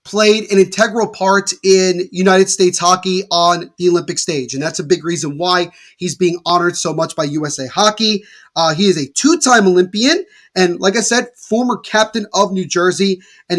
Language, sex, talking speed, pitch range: English, male, 185 wpm, 165-205 Hz